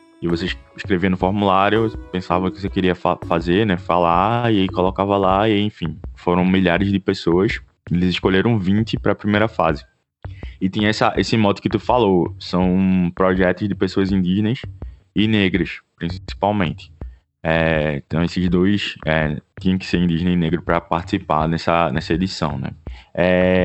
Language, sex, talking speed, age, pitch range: Portuguese, male, 165 wpm, 20-39, 85-105 Hz